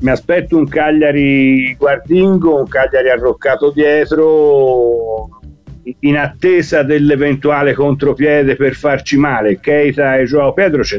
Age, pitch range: 50-69, 120-145 Hz